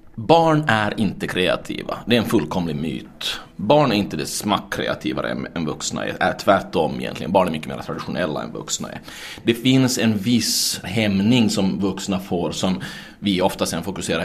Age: 30-49